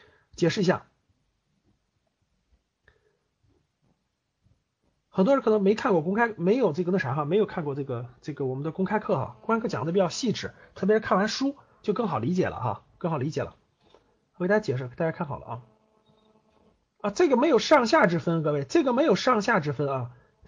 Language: Chinese